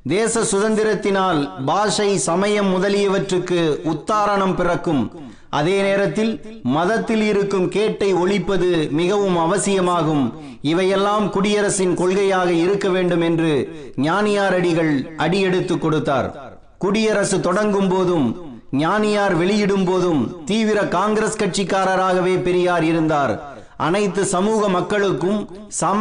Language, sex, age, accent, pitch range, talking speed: Tamil, male, 30-49, native, 175-205 Hz, 90 wpm